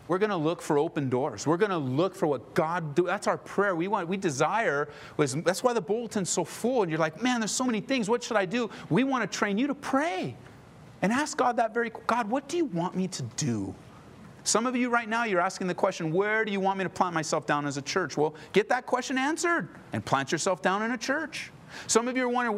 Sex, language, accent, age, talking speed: male, English, American, 40-59, 255 wpm